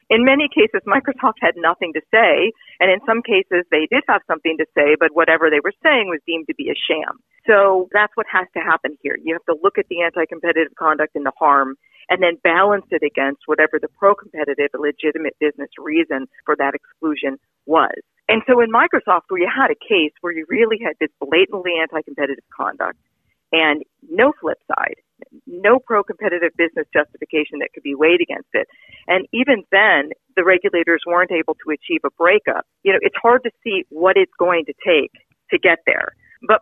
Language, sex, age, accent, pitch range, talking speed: English, female, 40-59, American, 155-215 Hz, 195 wpm